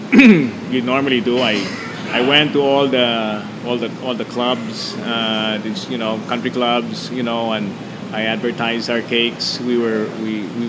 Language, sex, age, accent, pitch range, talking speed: English, male, 20-39, Filipino, 110-130 Hz, 170 wpm